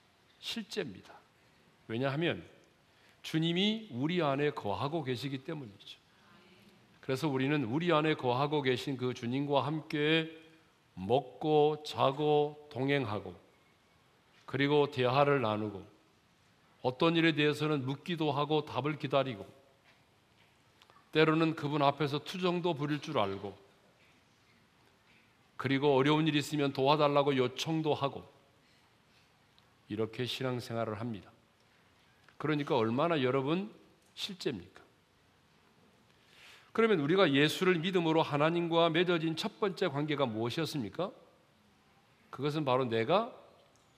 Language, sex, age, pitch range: Korean, male, 40-59, 125-160 Hz